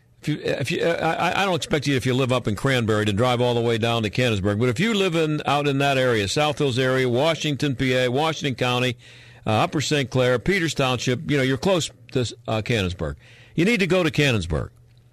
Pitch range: 115-145 Hz